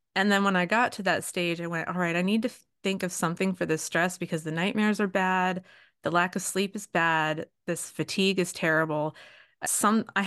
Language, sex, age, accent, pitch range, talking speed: English, female, 30-49, American, 170-215 Hz, 220 wpm